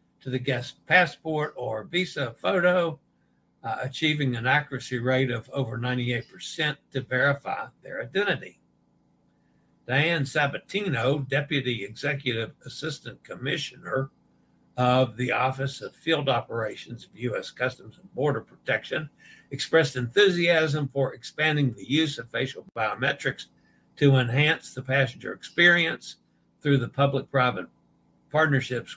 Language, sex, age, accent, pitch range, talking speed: English, male, 60-79, American, 125-150 Hz, 115 wpm